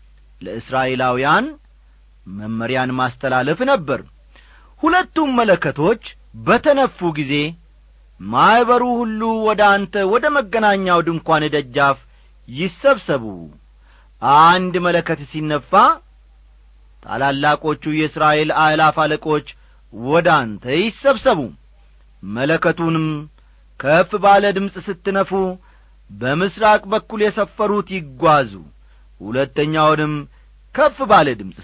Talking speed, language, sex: 70 wpm, Amharic, male